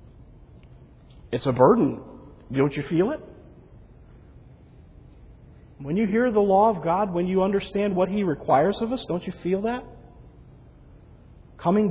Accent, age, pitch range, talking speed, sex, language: American, 40-59, 135-180 Hz, 135 wpm, male, English